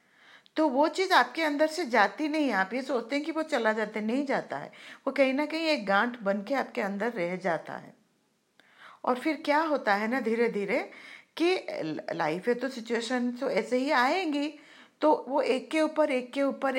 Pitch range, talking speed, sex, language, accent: 205-295 Hz, 205 wpm, female, Hindi, native